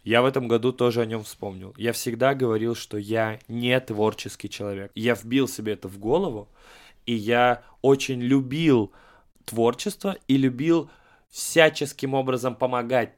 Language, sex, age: Russian, male, 20-39